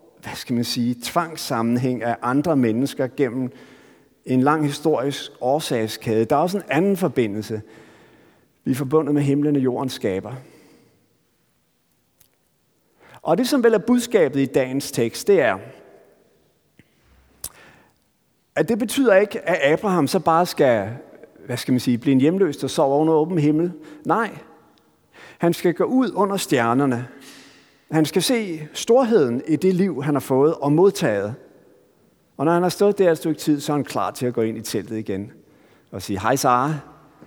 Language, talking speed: Danish, 165 wpm